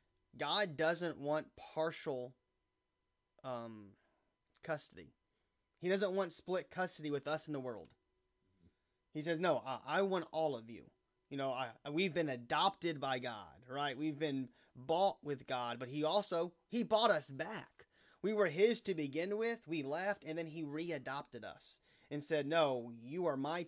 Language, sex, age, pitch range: English, male, 30-49, 130-175 Hz